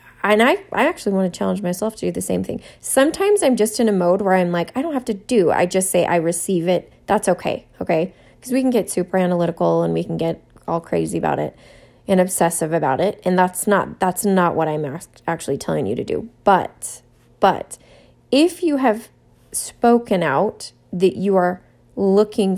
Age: 20-39